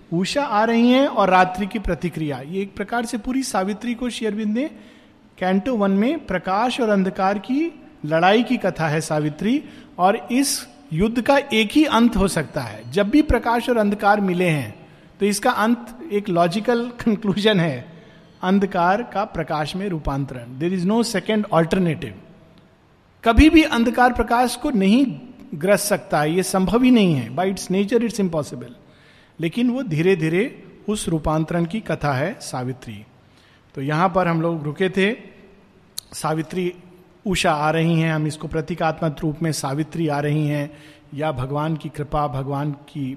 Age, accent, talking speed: 50-69, native, 160 wpm